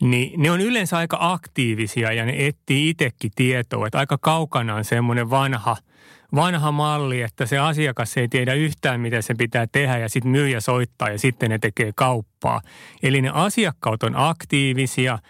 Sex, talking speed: male, 175 wpm